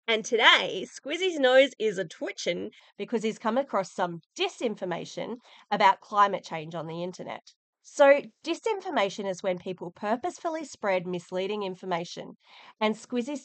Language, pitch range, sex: English, 185-260 Hz, female